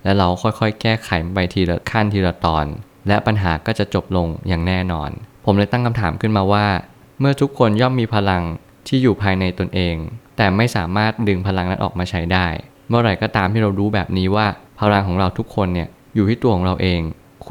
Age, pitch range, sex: 20-39, 95-110 Hz, male